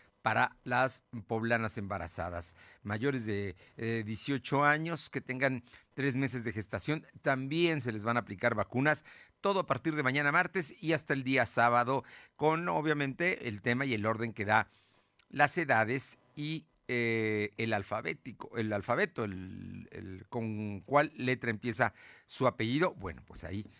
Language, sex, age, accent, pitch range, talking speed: Spanish, male, 50-69, Mexican, 110-160 Hz, 155 wpm